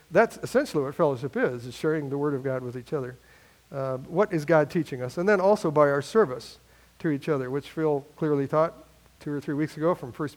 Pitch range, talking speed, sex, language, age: 135-170 Hz, 230 wpm, male, English, 50-69